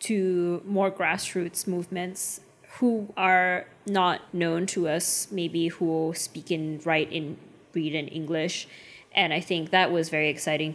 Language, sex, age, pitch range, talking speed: English, female, 20-39, 160-195 Hz, 145 wpm